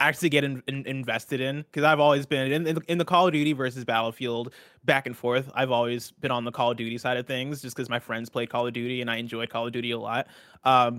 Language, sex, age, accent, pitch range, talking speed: English, male, 20-39, American, 120-145 Hz, 275 wpm